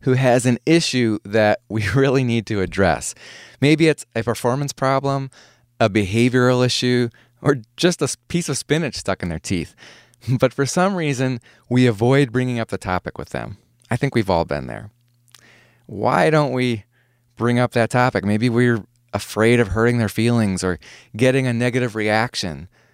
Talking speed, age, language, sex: 170 wpm, 30-49, English, male